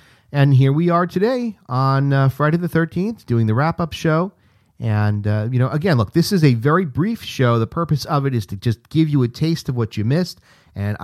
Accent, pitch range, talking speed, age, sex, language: American, 110-150 Hz, 230 wpm, 40-59, male, English